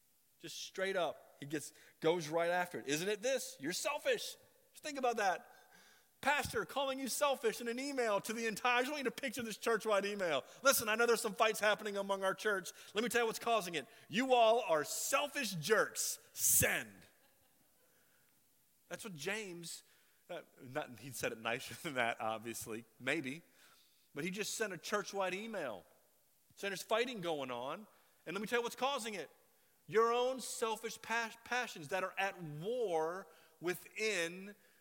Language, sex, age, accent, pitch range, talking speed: English, male, 30-49, American, 150-225 Hz, 175 wpm